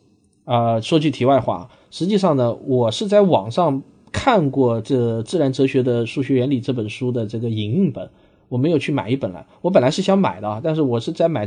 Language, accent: Chinese, native